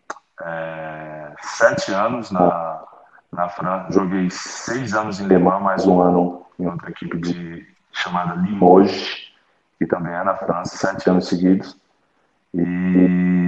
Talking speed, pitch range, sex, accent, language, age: 135 wpm, 85-100 Hz, male, Brazilian, Portuguese, 20-39